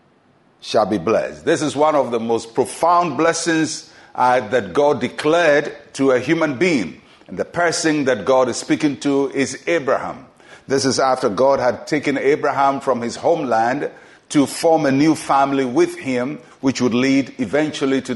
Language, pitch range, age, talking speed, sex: English, 125-165 Hz, 50-69, 170 wpm, male